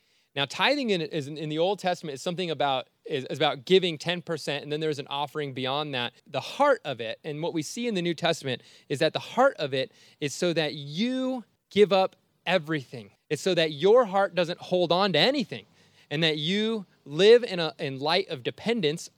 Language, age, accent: English, 20-39, American